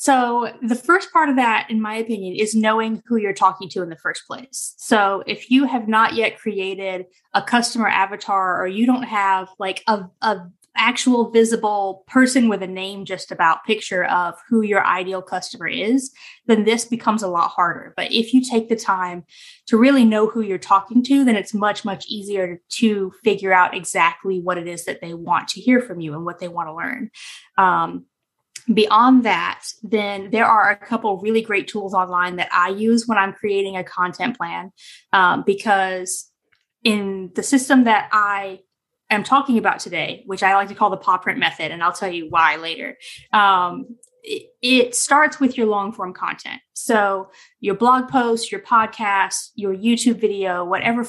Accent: American